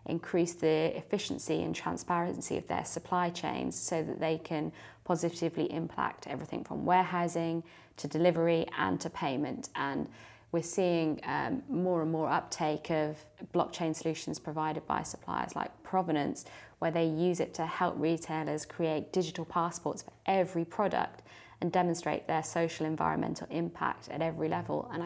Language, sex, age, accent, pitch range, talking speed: English, female, 20-39, British, 155-175 Hz, 150 wpm